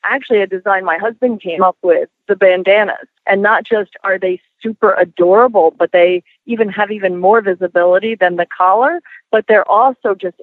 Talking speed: 180 wpm